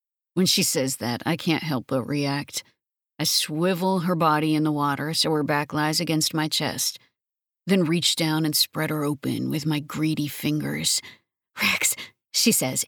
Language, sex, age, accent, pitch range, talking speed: English, female, 40-59, American, 145-175 Hz, 170 wpm